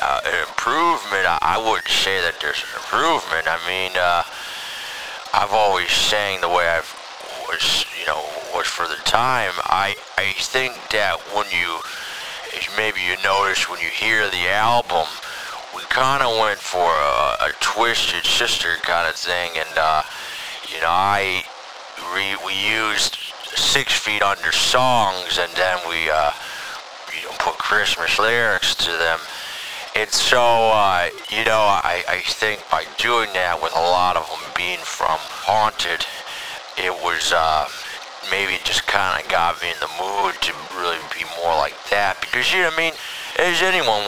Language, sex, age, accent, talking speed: English, male, 30-49, American, 165 wpm